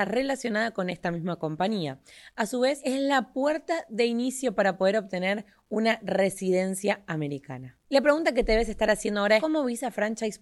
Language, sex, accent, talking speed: Spanish, female, Argentinian, 180 wpm